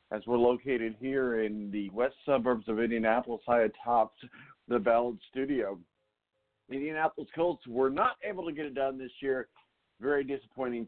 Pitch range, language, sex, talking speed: 120-160 Hz, English, male, 155 wpm